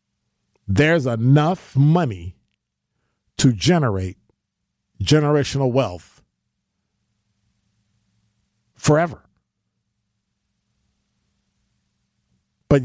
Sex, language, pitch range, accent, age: male, English, 105-145 Hz, American, 50-69